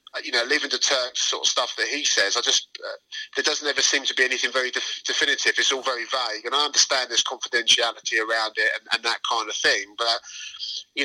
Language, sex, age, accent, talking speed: English, male, 30-49, British, 230 wpm